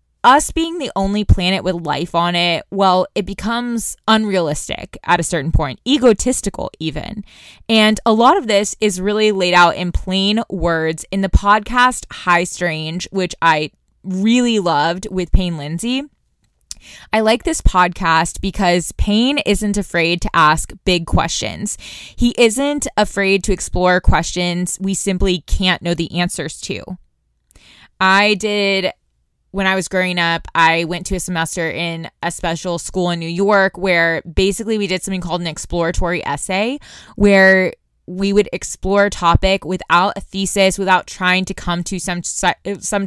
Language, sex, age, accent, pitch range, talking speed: English, female, 20-39, American, 170-205 Hz, 155 wpm